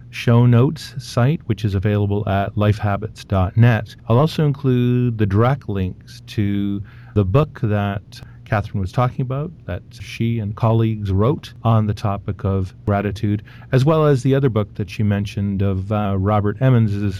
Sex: male